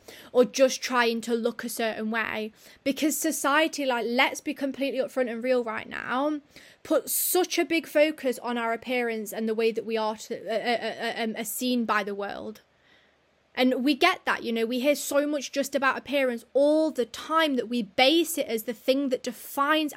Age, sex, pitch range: 20-39, female, 230-270 Hz